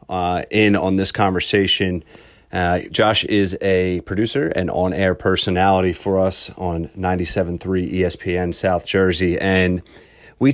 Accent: American